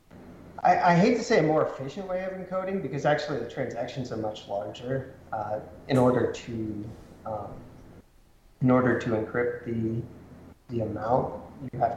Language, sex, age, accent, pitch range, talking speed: English, male, 30-49, American, 110-135 Hz, 160 wpm